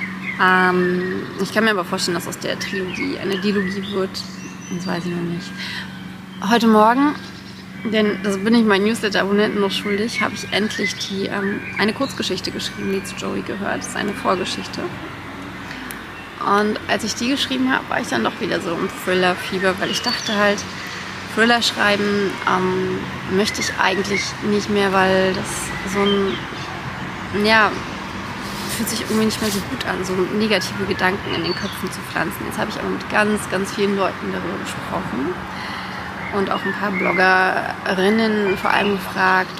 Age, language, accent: 30-49, German, German